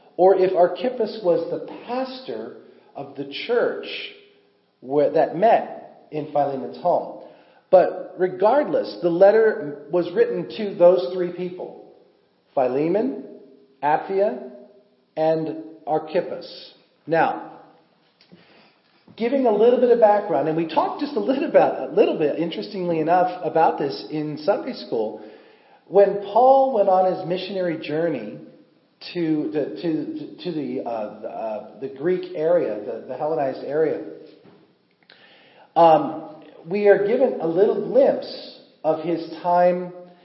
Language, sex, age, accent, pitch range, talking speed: English, male, 40-59, American, 150-205 Hz, 120 wpm